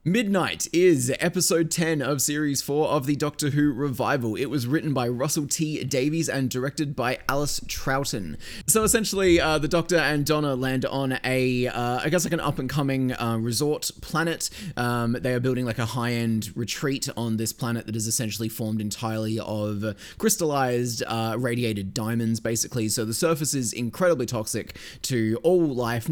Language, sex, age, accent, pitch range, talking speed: English, male, 20-39, Australian, 115-150 Hz, 170 wpm